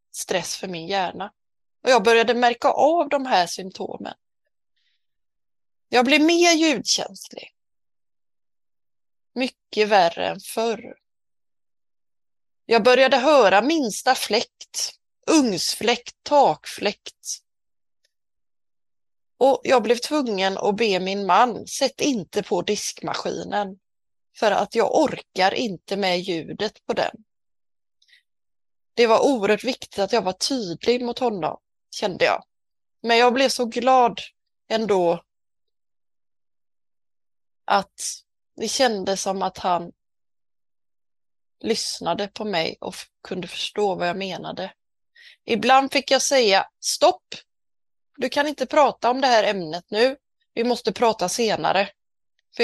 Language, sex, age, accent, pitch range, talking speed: Swedish, female, 30-49, native, 200-260 Hz, 115 wpm